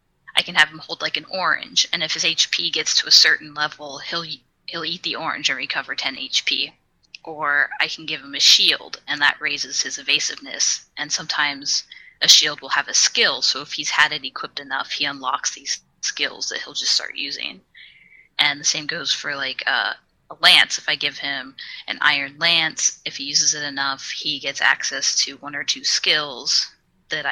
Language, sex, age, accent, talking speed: English, female, 20-39, American, 200 wpm